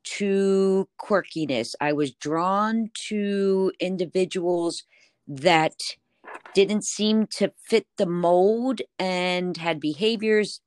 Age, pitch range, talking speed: 40-59, 155-190 Hz, 95 wpm